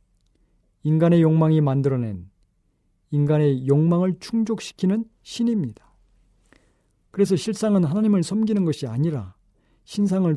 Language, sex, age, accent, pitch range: Korean, male, 40-59, native, 115-165 Hz